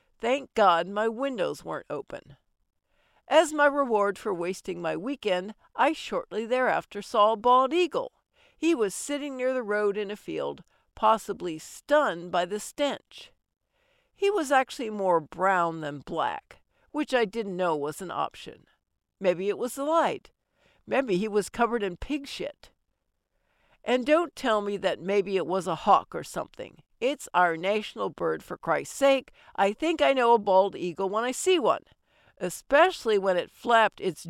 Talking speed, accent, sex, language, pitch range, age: 165 wpm, American, female, English, 190-285 Hz, 60-79